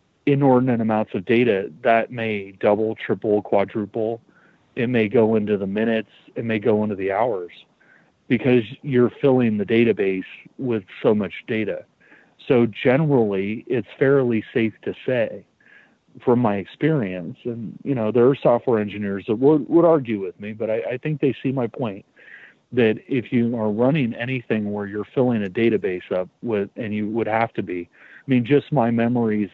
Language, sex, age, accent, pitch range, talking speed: English, male, 40-59, American, 105-125 Hz, 175 wpm